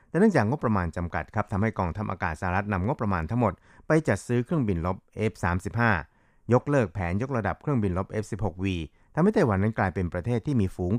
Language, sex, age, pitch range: Thai, male, 60-79, 90-115 Hz